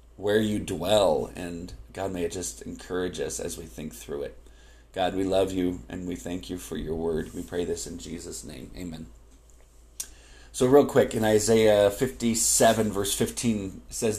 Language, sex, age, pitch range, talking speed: English, male, 40-59, 95-120 Hz, 180 wpm